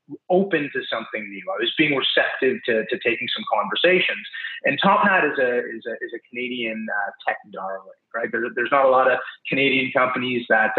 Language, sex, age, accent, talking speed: English, male, 30-49, American, 195 wpm